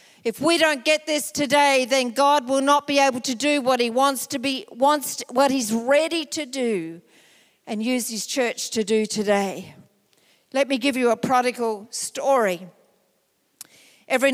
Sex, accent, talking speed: female, Australian, 165 wpm